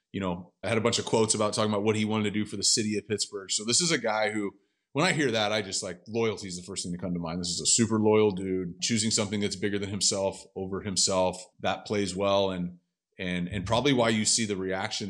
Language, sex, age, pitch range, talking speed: English, male, 30-49, 95-115 Hz, 275 wpm